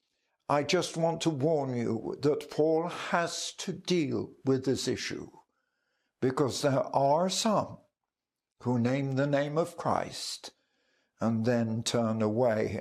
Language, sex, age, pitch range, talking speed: English, male, 60-79, 125-175 Hz, 130 wpm